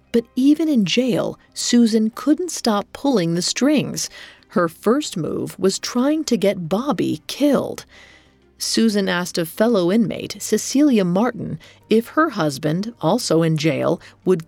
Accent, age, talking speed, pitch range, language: American, 40-59, 135 wpm, 165-235 Hz, English